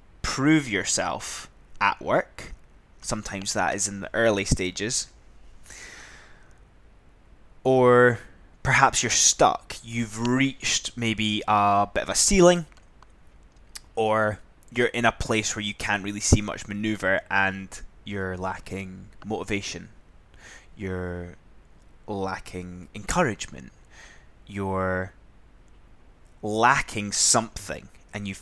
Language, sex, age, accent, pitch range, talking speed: English, male, 10-29, British, 95-115 Hz, 100 wpm